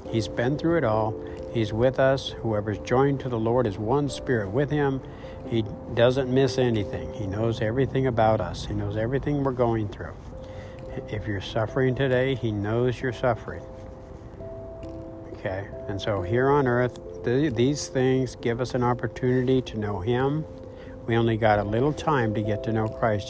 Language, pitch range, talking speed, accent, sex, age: English, 105-130 Hz, 175 wpm, American, male, 60-79